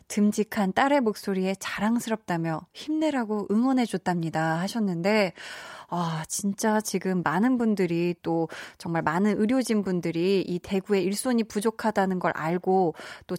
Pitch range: 175-225 Hz